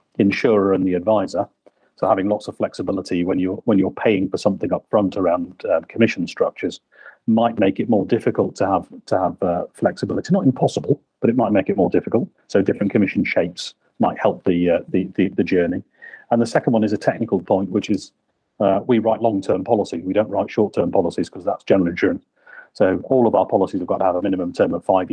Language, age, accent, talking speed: English, 40-59, British, 220 wpm